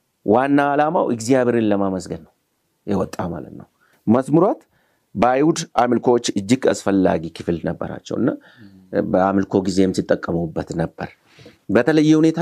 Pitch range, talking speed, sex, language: 95-120 Hz, 95 wpm, male, Amharic